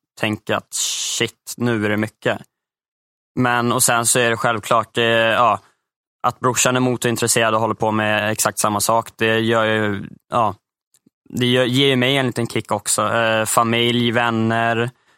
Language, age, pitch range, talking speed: English, 20-39, 110-125 Hz, 170 wpm